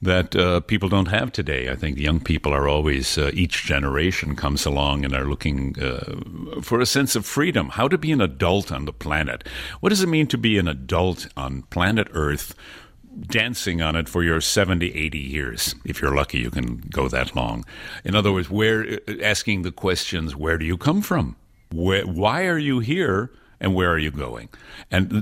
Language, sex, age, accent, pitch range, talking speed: German, male, 60-79, American, 75-100 Hz, 200 wpm